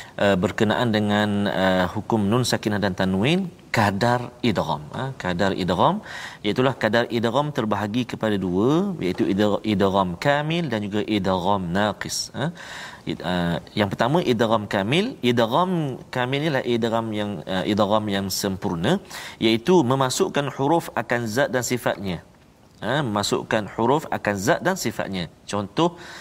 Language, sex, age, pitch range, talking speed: Malayalam, male, 40-59, 105-165 Hz, 135 wpm